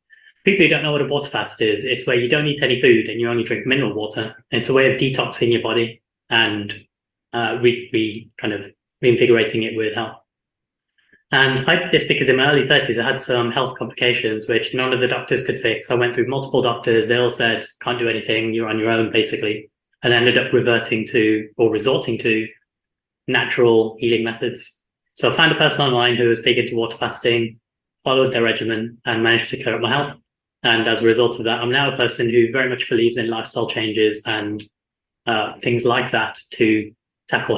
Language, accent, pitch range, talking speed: English, British, 115-130 Hz, 215 wpm